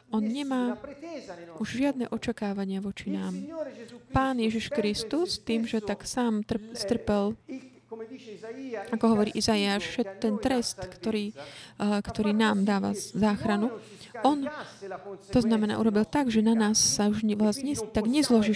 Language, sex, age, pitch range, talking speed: Slovak, female, 30-49, 200-230 Hz, 125 wpm